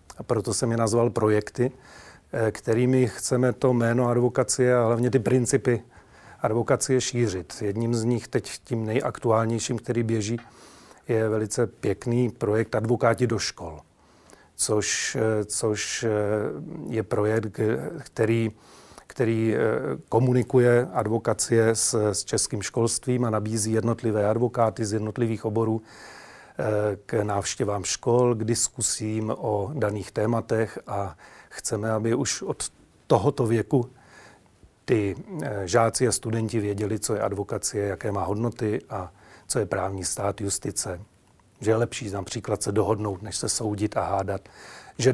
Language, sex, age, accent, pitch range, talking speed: Czech, male, 40-59, native, 105-120 Hz, 125 wpm